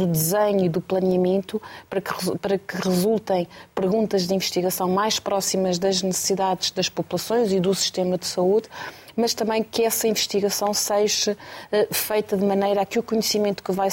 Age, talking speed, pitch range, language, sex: 30-49, 160 wpm, 190-210 Hz, Portuguese, female